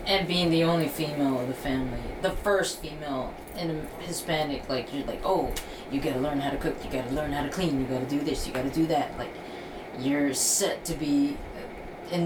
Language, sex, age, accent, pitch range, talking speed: English, female, 20-39, American, 130-170 Hz, 215 wpm